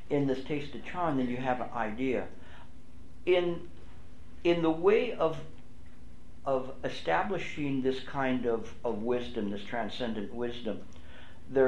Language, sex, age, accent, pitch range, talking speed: English, male, 60-79, American, 90-135 Hz, 135 wpm